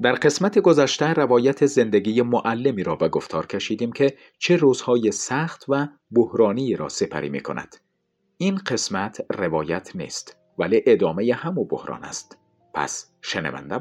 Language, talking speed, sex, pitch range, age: Persian, 135 wpm, male, 100-155 Hz, 50-69